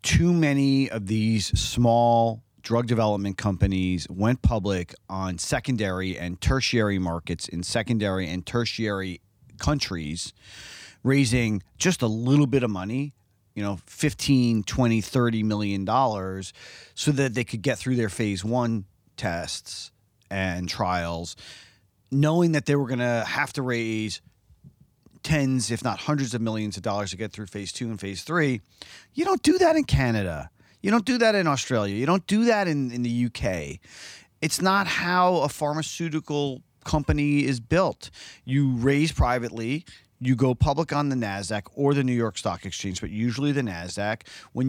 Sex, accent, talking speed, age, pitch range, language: male, American, 160 wpm, 40-59, 100-135 Hz, English